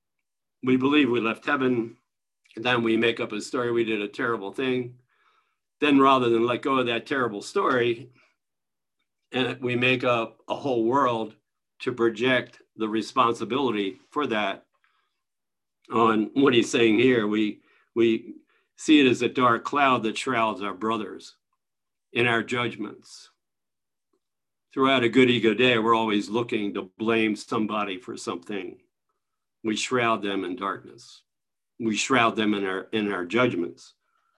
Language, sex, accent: English, male, American